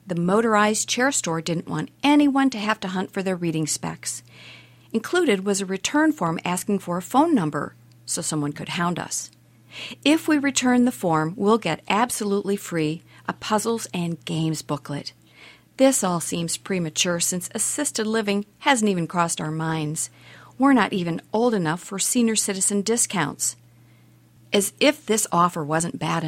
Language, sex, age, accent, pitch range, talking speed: English, female, 50-69, American, 160-220 Hz, 160 wpm